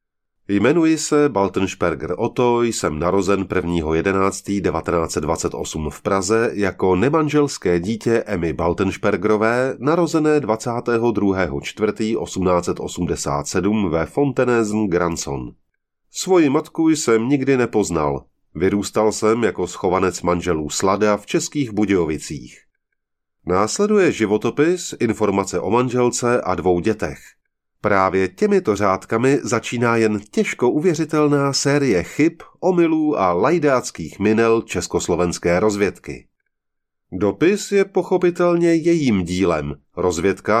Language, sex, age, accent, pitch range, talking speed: English, male, 30-49, Czech, 95-140 Hz, 95 wpm